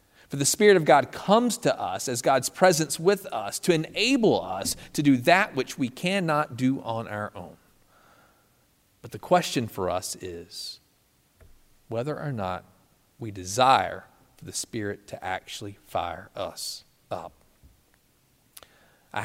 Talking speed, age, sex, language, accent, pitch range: 140 wpm, 40-59, male, English, American, 105-140 Hz